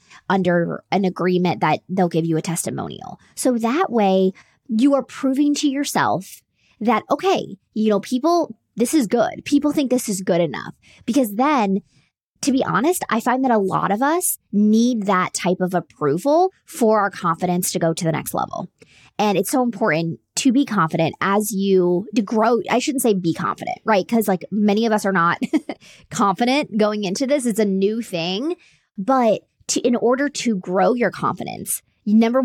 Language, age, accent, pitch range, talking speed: English, 20-39, American, 190-255 Hz, 180 wpm